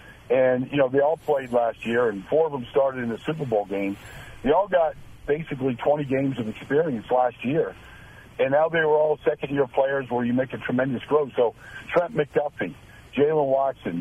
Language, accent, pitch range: English, American, 120-150 Hz